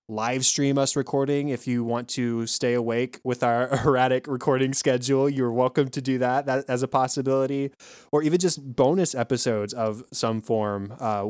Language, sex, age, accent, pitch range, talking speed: English, male, 20-39, American, 115-135 Hz, 175 wpm